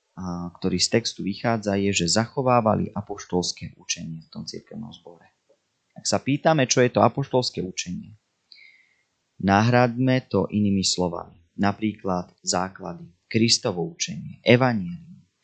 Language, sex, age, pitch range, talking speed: Slovak, male, 30-49, 95-125 Hz, 115 wpm